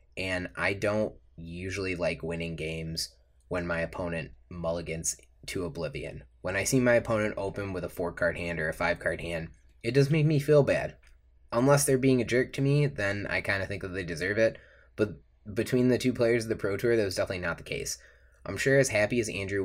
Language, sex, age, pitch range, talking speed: English, male, 20-39, 80-110 Hz, 215 wpm